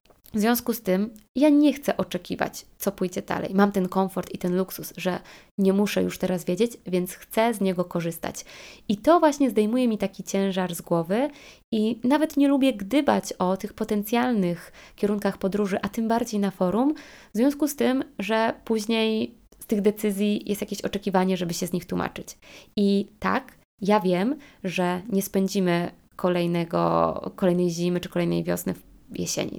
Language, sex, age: Polish, female, 20-39